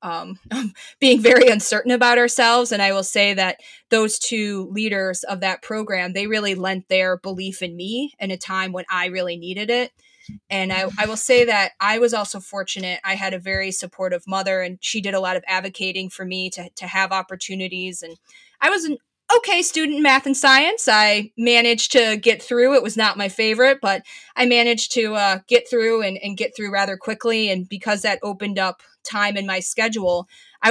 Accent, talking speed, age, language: American, 205 wpm, 20-39, English